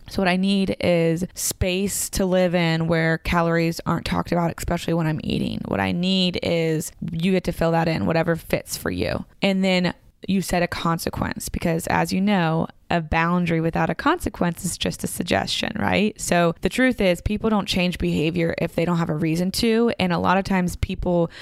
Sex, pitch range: female, 170-200 Hz